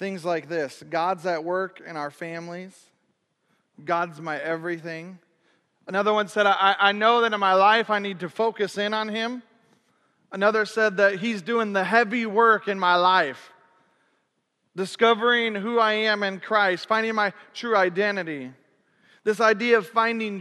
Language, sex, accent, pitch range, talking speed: English, male, American, 185-220 Hz, 160 wpm